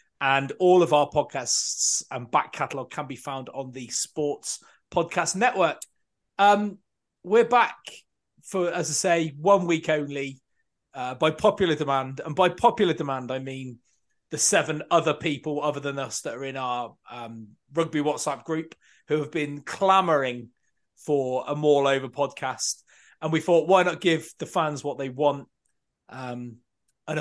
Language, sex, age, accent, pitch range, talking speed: English, male, 30-49, British, 135-170 Hz, 160 wpm